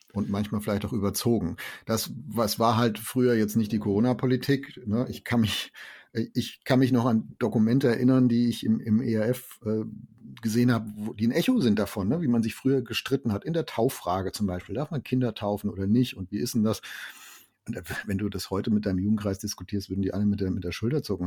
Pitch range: 105-125 Hz